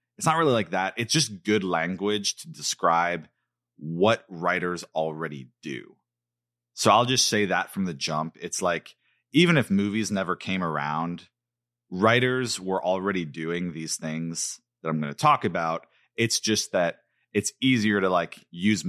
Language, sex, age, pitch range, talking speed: English, male, 30-49, 80-115 Hz, 160 wpm